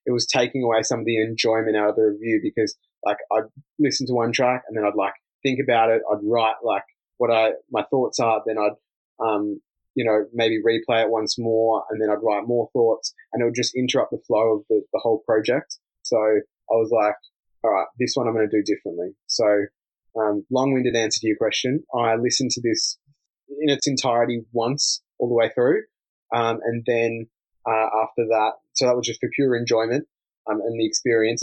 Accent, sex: Australian, male